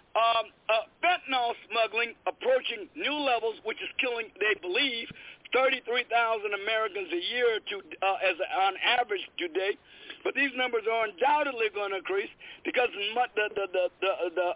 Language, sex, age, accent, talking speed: English, male, 50-69, American, 155 wpm